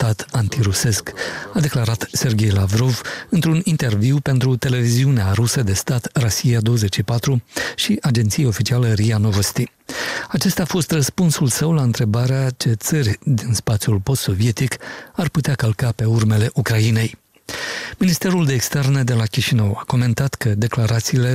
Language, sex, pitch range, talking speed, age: Romanian, male, 115-140 Hz, 135 wpm, 40-59